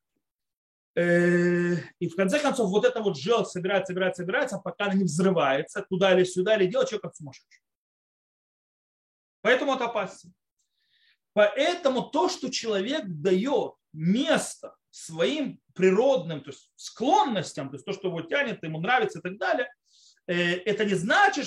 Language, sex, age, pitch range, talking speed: Russian, male, 30-49, 155-210 Hz, 140 wpm